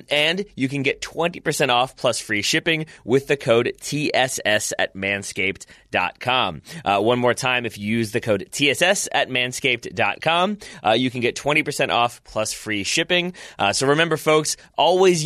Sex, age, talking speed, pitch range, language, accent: male, 30-49, 160 wpm, 115-155 Hz, English, American